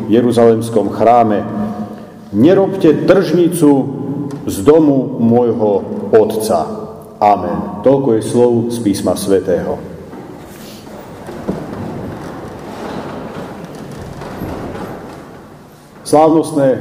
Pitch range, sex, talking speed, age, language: 120-185 Hz, male, 55 wpm, 50-69, Slovak